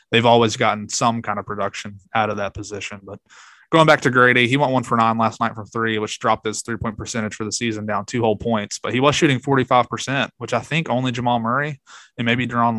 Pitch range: 105-125 Hz